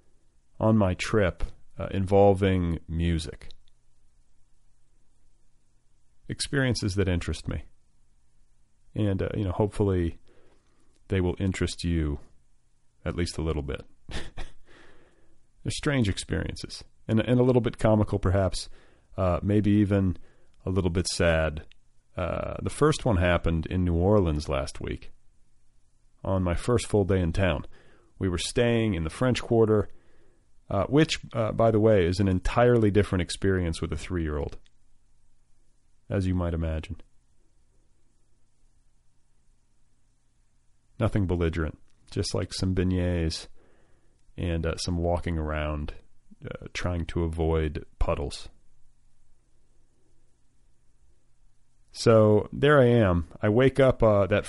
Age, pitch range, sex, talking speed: 40-59, 85-105 Hz, male, 120 wpm